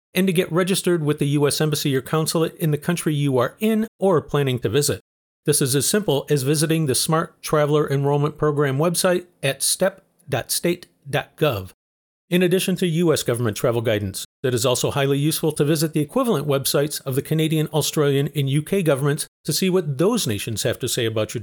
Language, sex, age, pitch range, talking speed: English, male, 40-59, 135-170 Hz, 190 wpm